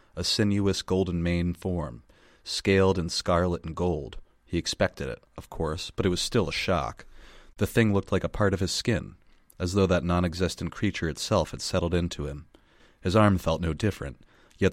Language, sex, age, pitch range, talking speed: English, male, 30-49, 80-95 Hz, 185 wpm